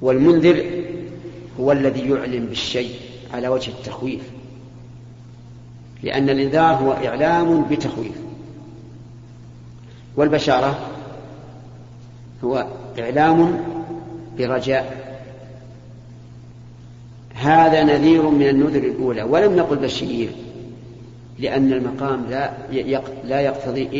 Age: 50-69